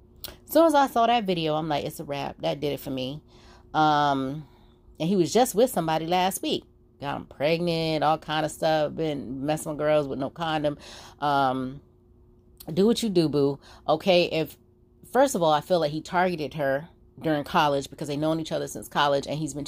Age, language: 30-49, English